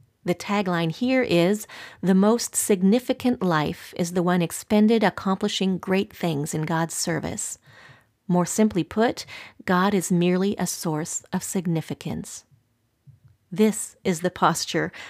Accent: American